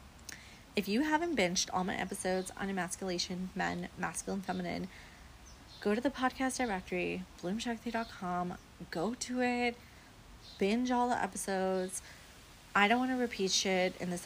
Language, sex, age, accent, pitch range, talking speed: English, female, 30-49, American, 180-225 Hz, 140 wpm